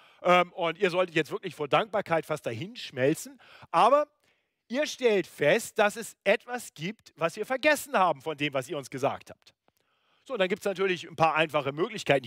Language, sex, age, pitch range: German, male, 40-59, 145-230 Hz